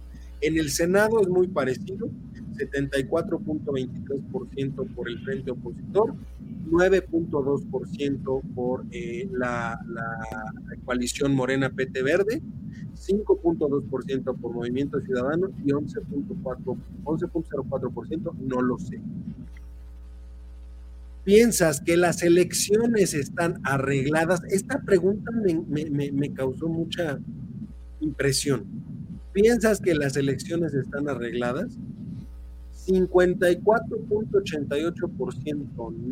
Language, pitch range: Spanish, 130-185 Hz